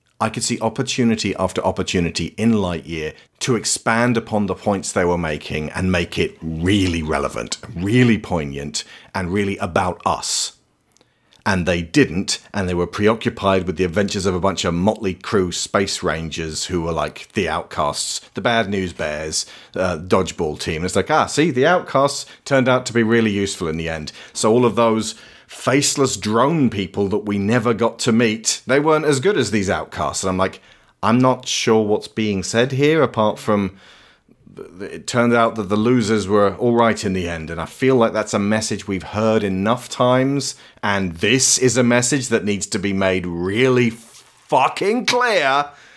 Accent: British